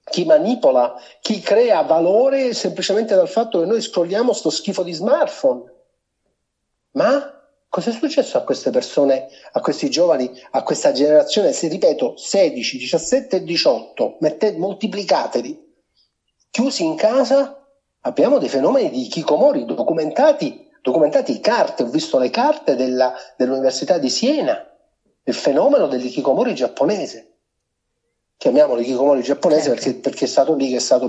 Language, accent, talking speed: Italian, native, 135 wpm